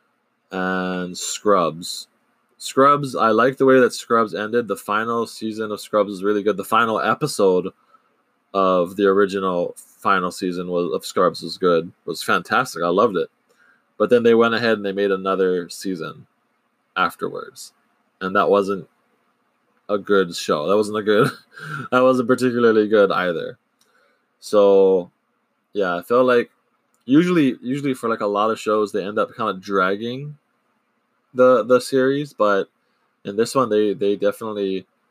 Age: 20-39